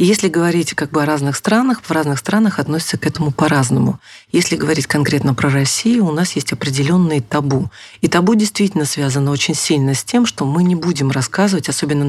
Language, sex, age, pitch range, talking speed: Russian, female, 40-59, 150-195 Hz, 195 wpm